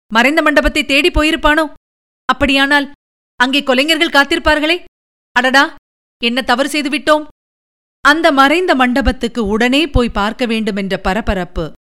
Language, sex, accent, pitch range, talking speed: Tamil, female, native, 240-300 Hz, 100 wpm